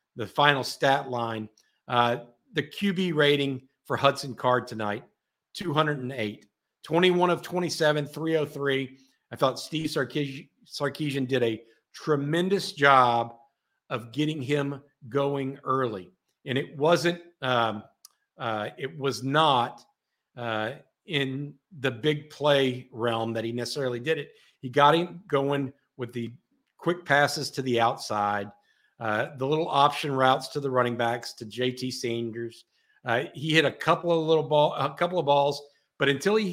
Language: English